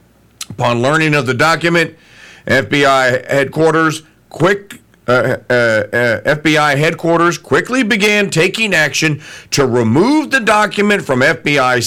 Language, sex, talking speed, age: English, male, 115 wpm, 50-69